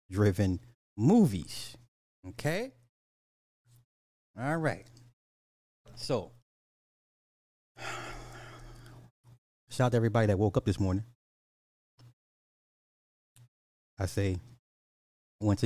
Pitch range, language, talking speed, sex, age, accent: 95-120 Hz, English, 70 wpm, male, 30-49, American